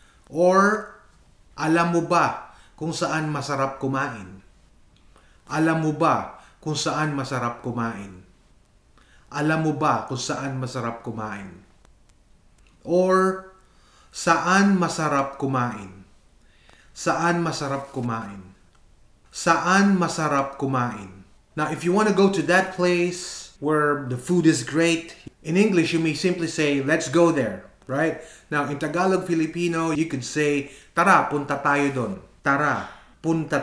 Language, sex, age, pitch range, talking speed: Filipino, male, 30-49, 120-165 Hz, 125 wpm